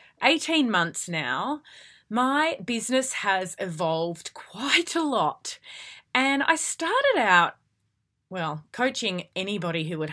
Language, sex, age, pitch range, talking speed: English, female, 30-49, 170-250 Hz, 115 wpm